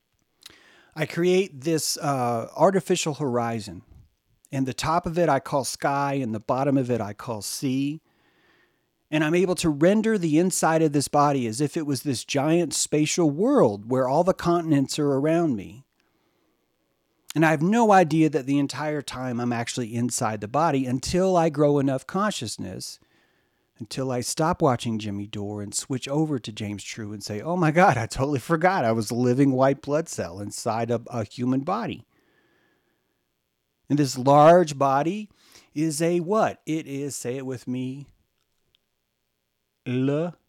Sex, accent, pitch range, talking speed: male, American, 115-160 Hz, 165 wpm